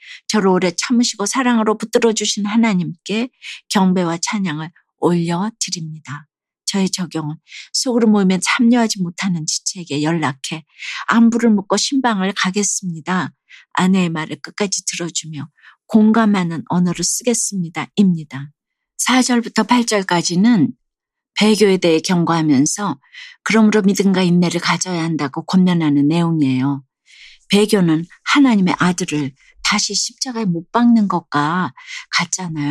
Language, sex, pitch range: Korean, female, 165-220 Hz